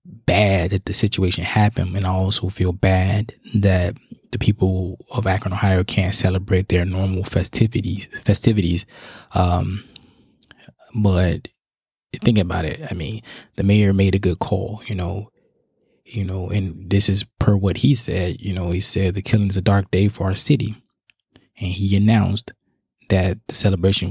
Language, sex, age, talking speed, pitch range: English, male, 20-39, 160 wpm, 95-105 Hz